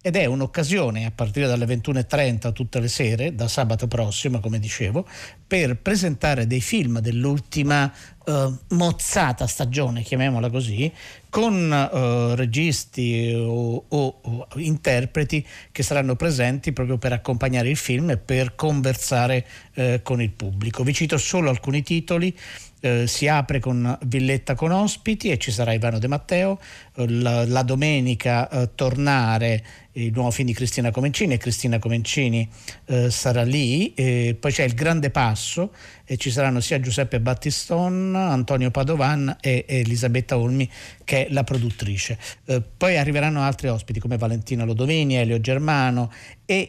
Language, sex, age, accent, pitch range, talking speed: Italian, male, 50-69, native, 115-145 Hz, 150 wpm